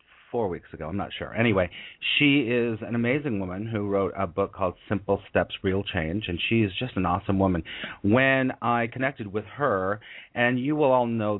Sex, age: male, 40-59